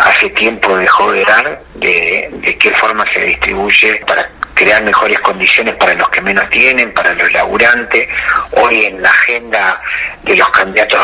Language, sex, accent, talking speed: Spanish, male, Argentinian, 165 wpm